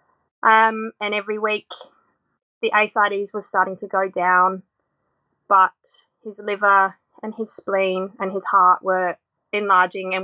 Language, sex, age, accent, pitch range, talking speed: English, female, 20-39, Australian, 190-225 Hz, 135 wpm